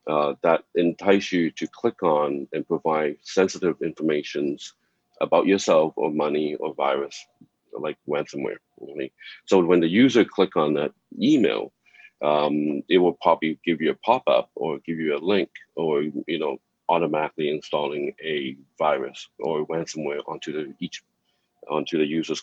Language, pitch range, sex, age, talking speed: English, 75-95 Hz, male, 40-59, 150 wpm